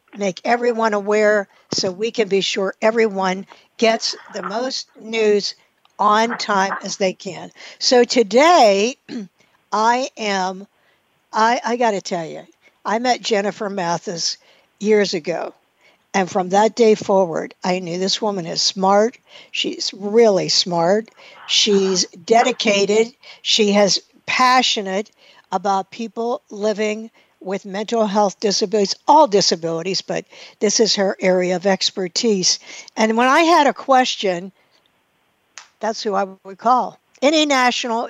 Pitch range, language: 190-230 Hz, English